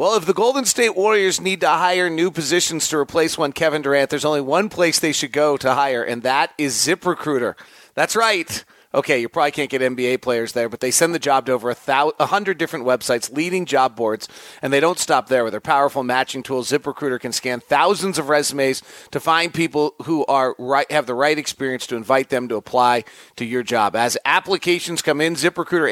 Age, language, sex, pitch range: 40-59, English, male, 135-165 Hz